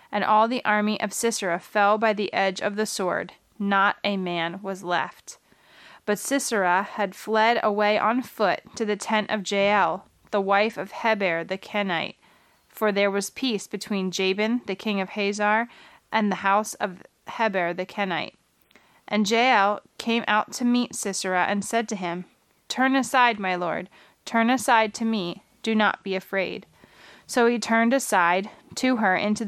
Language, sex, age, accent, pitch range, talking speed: English, female, 20-39, American, 195-230 Hz, 170 wpm